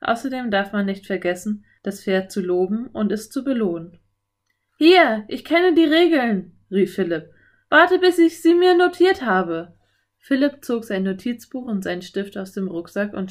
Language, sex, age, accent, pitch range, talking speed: German, female, 20-39, German, 170-235 Hz, 170 wpm